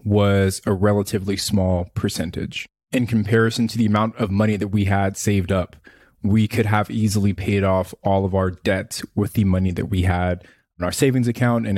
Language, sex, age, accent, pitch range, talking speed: English, male, 20-39, American, 95-115 Hz, 195 wpm